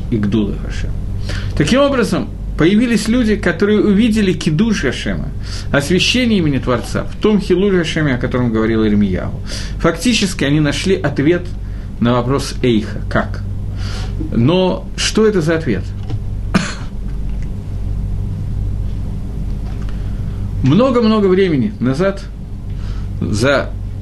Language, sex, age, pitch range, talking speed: Russian, male, 50-69, 100-165 Hz, 85 wpm